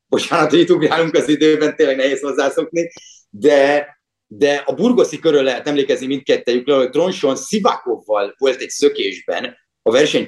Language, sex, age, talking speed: Hungarian, male, 30-49, 140 wpm